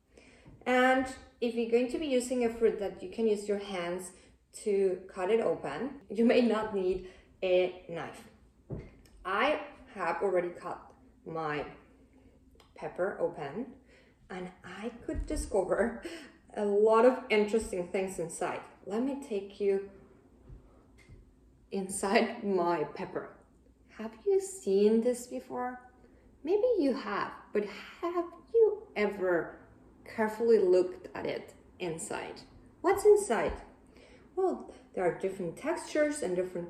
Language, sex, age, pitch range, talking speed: English, female, 20-39, 200-275 Hz, 125 wpm